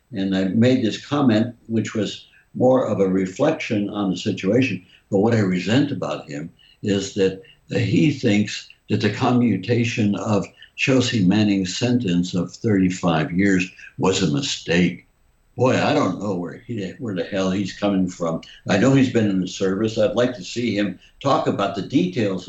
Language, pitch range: English, 95-125 Hz